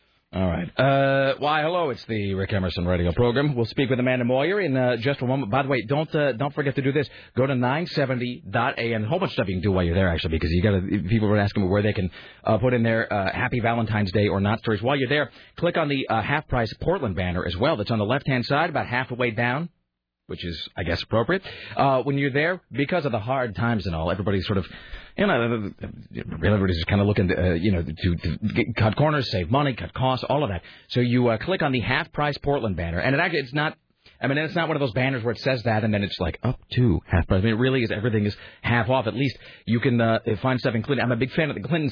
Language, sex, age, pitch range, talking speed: English, male, 30-49, 100-135 Hz, 275 wpm